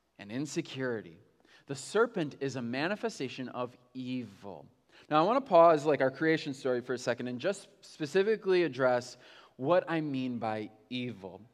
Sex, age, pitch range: male, 20-39, 130-185 Hz